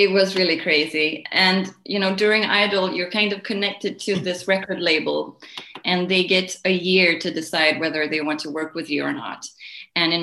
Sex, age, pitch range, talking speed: female, 20-39, 160-195 Hz, 205 wpm